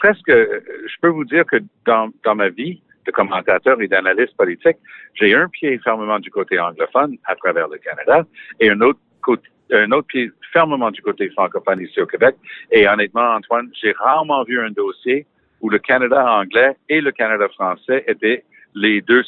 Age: 60-79